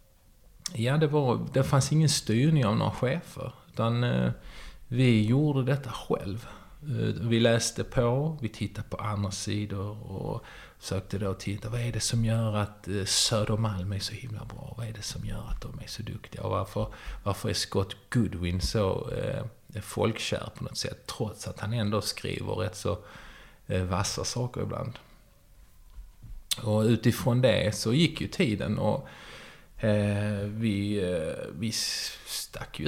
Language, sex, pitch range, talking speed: Swedish, male, 100-120 Hz, 150 wpm